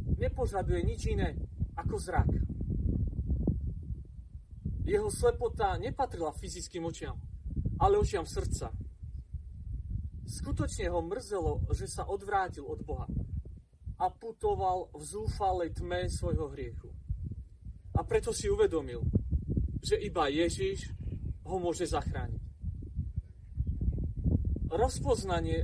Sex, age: male, 40-59